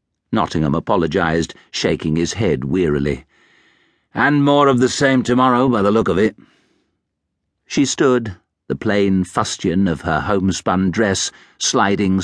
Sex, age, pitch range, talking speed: male, 50-69, 80-115 Hz, 130 wpm